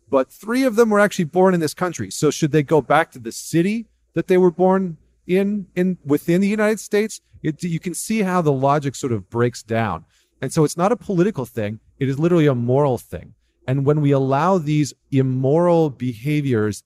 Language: English